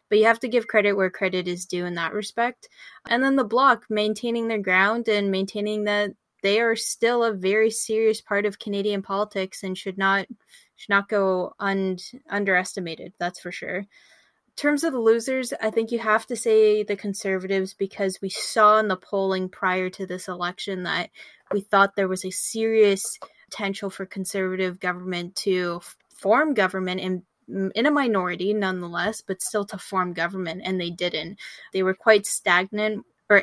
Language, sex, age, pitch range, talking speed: English, female, 10-29, 190-225 Hz, 180 wpm